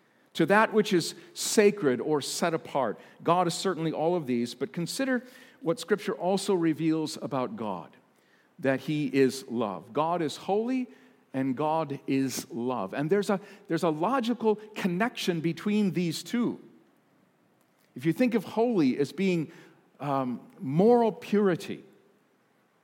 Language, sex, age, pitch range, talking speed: English, male, 50-69, 160-225 Hz, 135 wpm